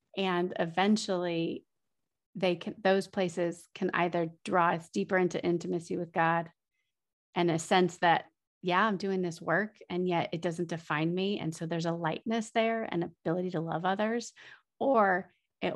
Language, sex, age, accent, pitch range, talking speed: English, female, 30-49, American, 165-190 Hz, 165 wpm